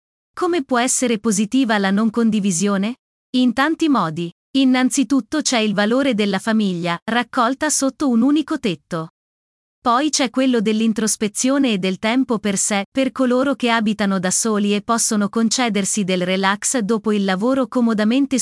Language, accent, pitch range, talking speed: Italian, native, 205-255 Hz, 145 wpm